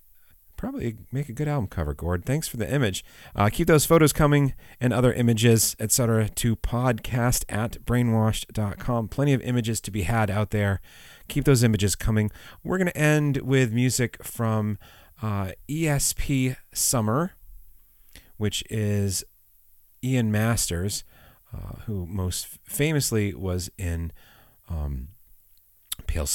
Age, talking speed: 30-49, 130 wpm